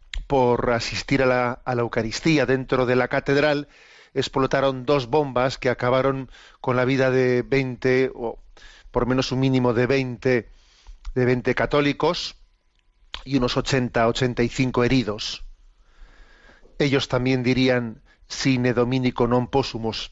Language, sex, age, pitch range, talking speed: Spanish, male, 40-59, 120-135 Hz, 130 wpm